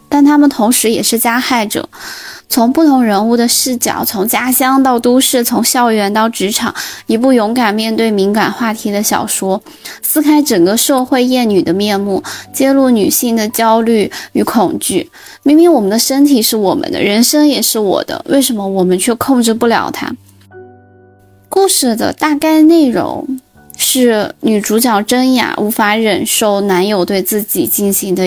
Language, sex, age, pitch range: Chinese, female, 20-39, 200-265 Hz